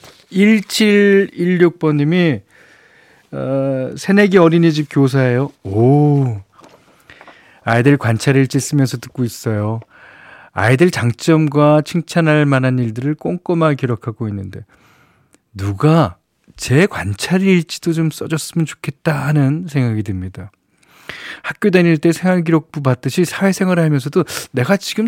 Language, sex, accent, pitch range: Korean, male, native, 115-160 Hz